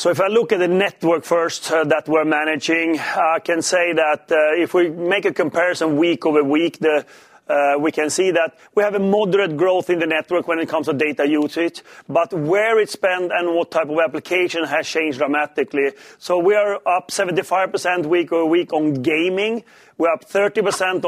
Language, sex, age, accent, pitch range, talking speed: English, male, 30-49, Swedish, 160-195 Hz, 200 wpm